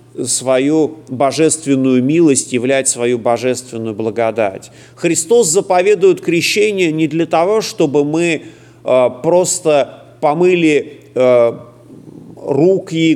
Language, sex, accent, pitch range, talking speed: Russian, male, native, 145-195 Hz, 90 wpm